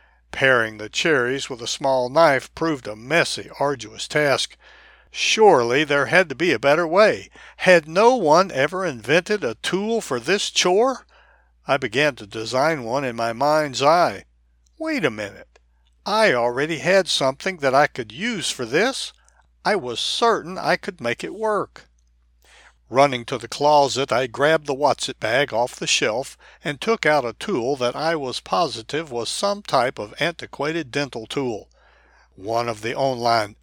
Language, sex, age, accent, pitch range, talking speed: English, male, 60-79, American, 120-165 Hz, 165 wpm